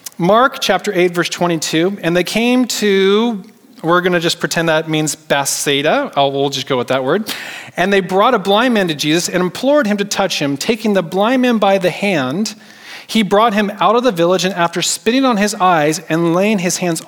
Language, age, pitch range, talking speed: English, 30-49, 175-225 Hz, 220 wpm